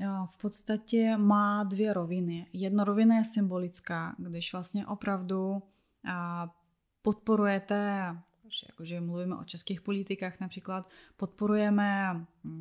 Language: Czech